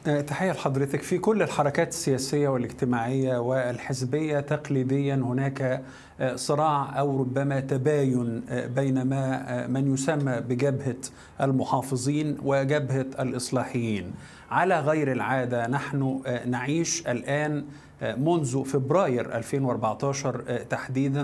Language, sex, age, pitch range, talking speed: Arabic, male, 50-69, 130-150 Hz, 90 wpm